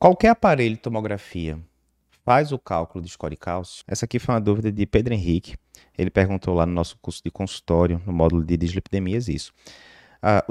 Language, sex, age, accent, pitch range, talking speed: Portuguese, male, 20-39, Brazilian, 90-125 Hz, 185 wpm